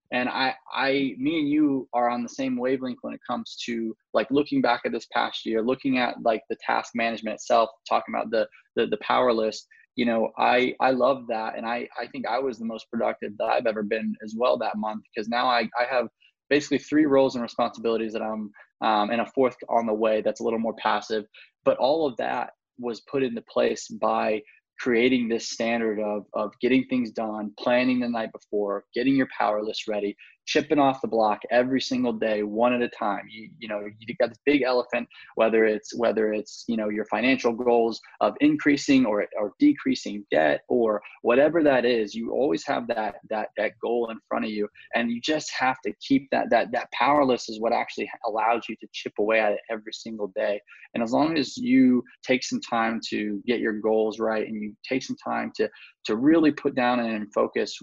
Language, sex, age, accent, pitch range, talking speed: English, male, 20-39, American, 110-130 Hz, 215 wpm